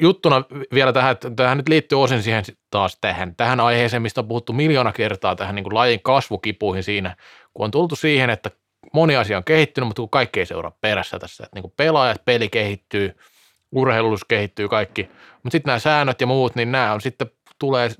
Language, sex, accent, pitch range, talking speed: Finnish, male, native, 110-135 Hz, 185 wpm